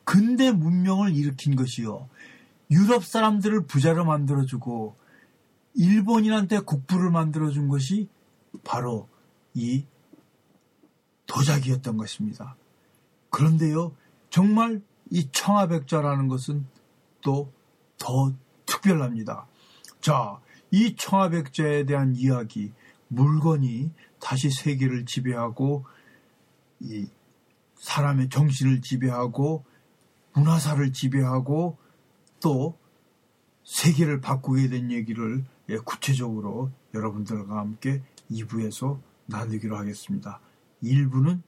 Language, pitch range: Korean, 125-160 Hz